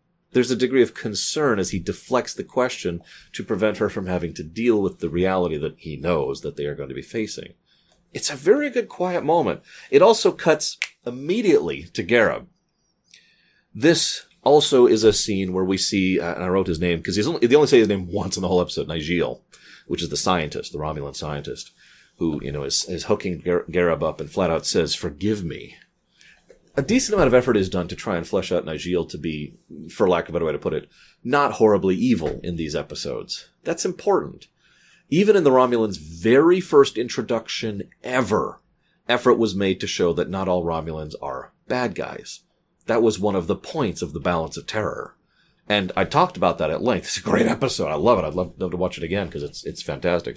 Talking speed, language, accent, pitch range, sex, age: 210 wpm, English, American, 90-125 Hz, male, 30-49